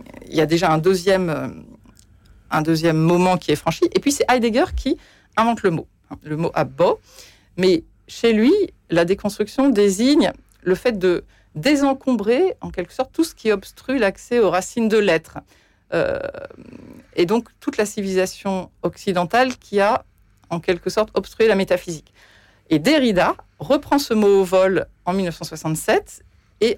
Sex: female